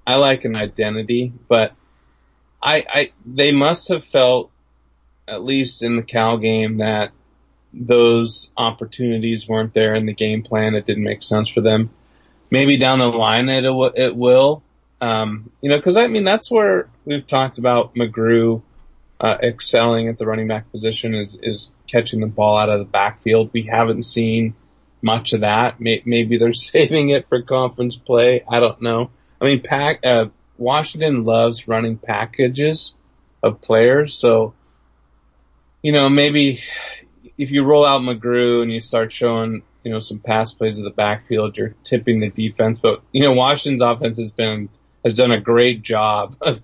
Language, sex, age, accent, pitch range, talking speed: English, male, 30-49, American, 110-125 Hz, 170 wpm